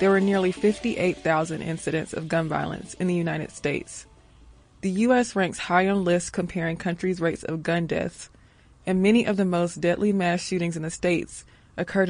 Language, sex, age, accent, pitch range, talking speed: English, female, 20-39, American, 170-200 Hz, 180 wpm